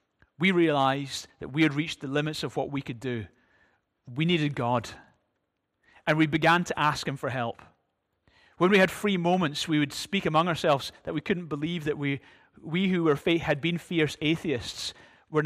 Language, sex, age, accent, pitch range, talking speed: English, male, 30-49, British, 125-155 Hz, 190 wpm